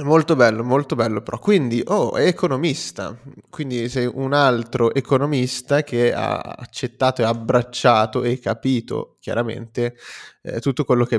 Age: 20-39